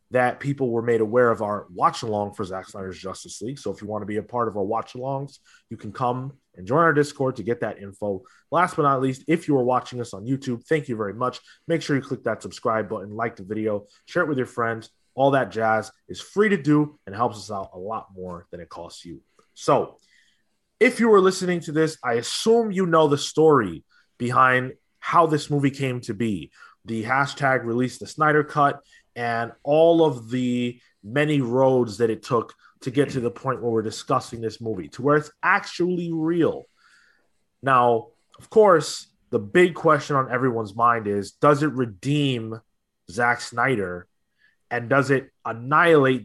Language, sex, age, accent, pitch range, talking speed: English, male, 20-39, American, 110-145 Hz, 200 wpm